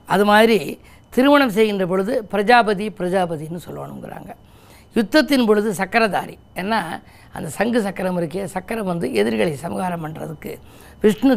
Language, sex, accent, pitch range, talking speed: Tamil, female, native, 180-225 Hz, 115 wpm